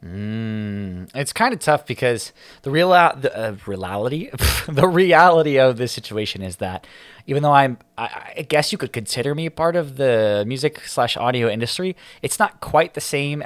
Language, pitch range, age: English, 110-150 Hz, 20-39